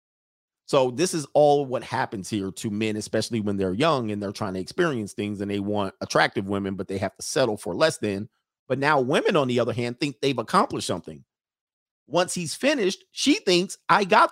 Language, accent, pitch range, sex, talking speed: English, American, 105-160 Hz, male, 210 wpm